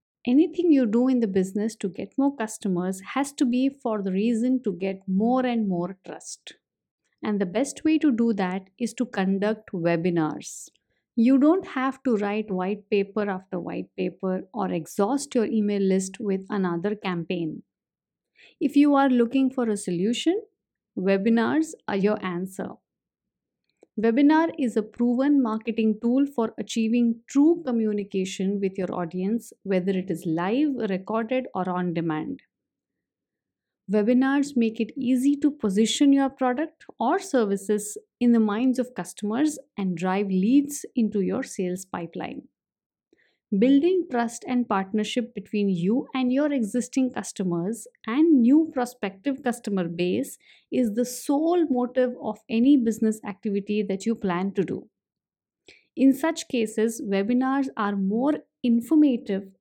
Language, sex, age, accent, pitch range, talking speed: English, female, 50-69, Indian, 200-260 Hz, 140 wpm